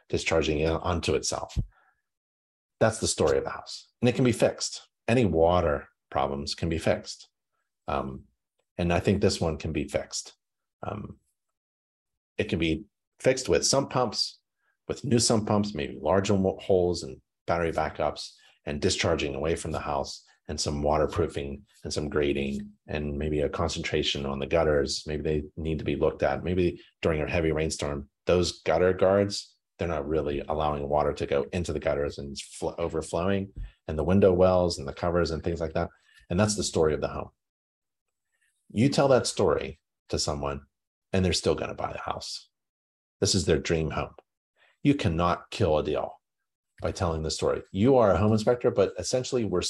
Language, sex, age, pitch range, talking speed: English, male, 40-59, 75-95 Hz, 180 wpm